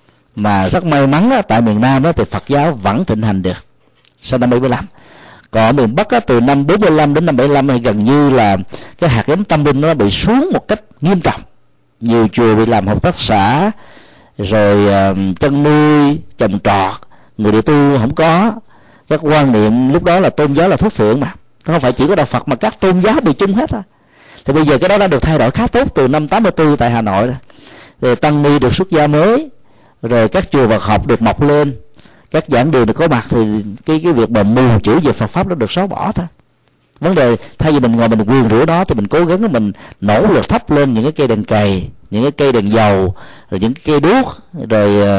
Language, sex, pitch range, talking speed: Vietnamese, male, 105-150 Hz, 235 wpm